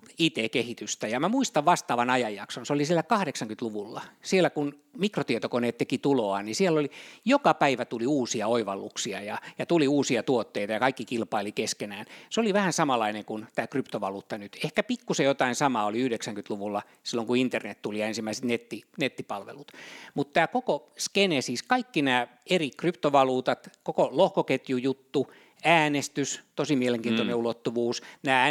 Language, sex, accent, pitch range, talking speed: Finnish, male, native, 115-155 Hz, 145 wpm